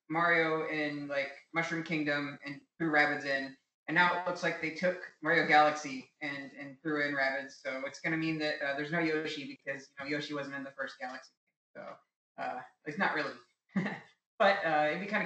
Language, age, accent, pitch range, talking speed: English, 20-39, American, 140-160 Hz, 200 wpm